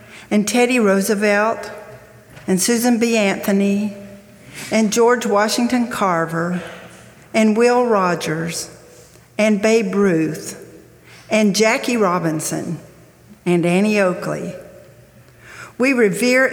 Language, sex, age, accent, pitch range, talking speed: English, female, 60-79, American, 185-225 Hz, 90 wpm